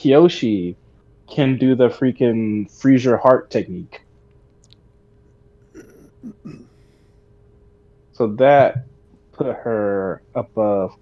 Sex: male